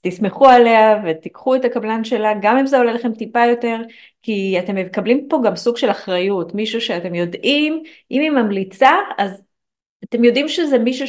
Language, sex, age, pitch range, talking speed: Hebrew, female, 30-49, 185-245 Hz, 175 wpm